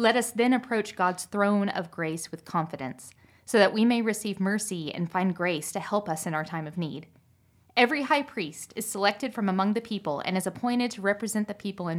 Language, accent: English, American